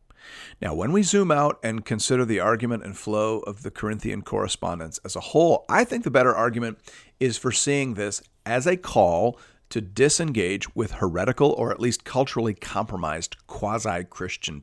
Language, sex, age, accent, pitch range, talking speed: English, male, 50-69, American, 105-140 Hz, 165 wpm